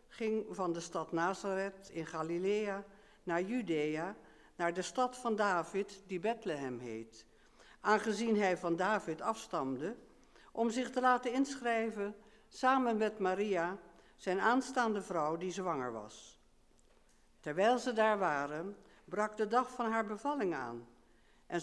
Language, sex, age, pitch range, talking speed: English, female, 60-79, 170-230 Hz, 135 wpm